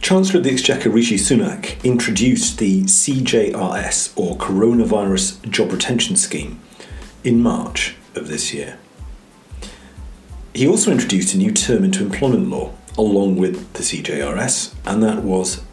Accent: British